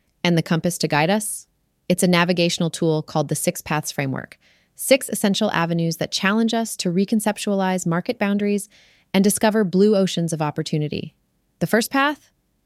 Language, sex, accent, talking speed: English, female, American, 160 wpm